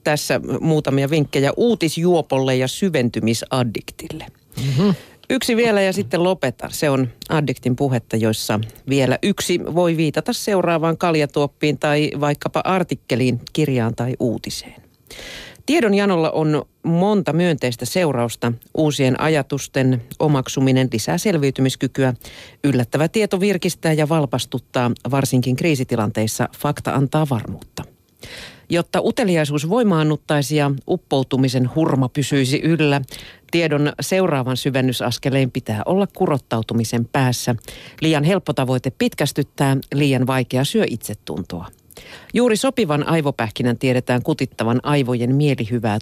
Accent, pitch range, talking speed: native, 125-160 Hz, 100 wpm